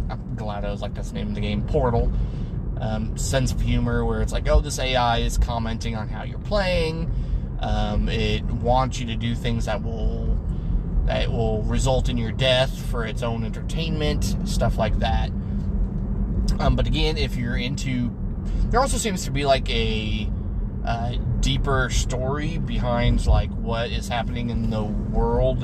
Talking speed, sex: 165 wpm, male